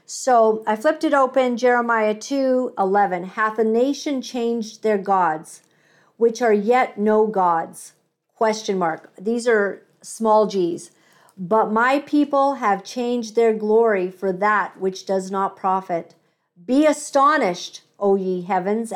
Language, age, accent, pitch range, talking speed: English, 50-69, American, 190-250 Hz, 135 wpm